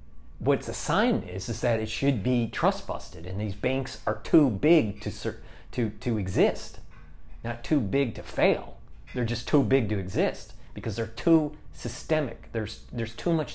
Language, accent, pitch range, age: English, American, 95-120 Hz, 40-59